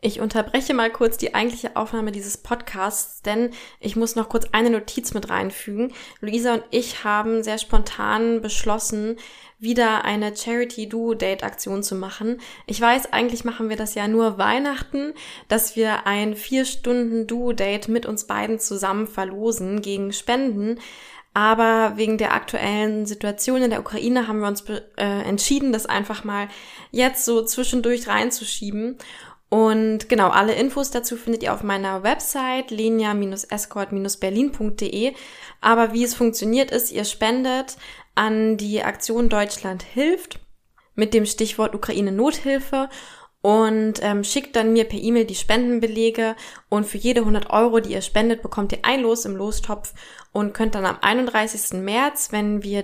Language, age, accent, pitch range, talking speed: German, 20-39, German, 210-240 Hz, 150 wpm